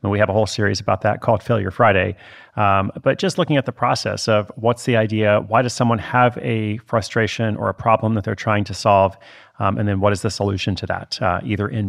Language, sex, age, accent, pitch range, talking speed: English, male, 40-59, American, 105-125 Hz, 235 wpm